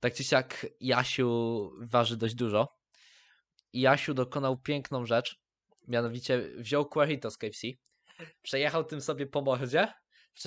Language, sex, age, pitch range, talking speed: Polish, male, 20-39, 125-155 Hz, 125 wpm